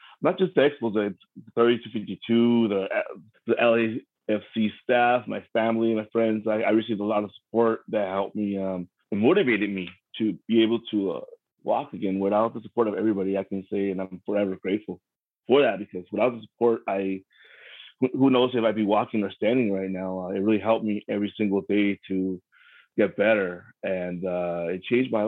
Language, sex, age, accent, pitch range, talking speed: English, male, 30-49, American, 95-110 Hz, 195 wpm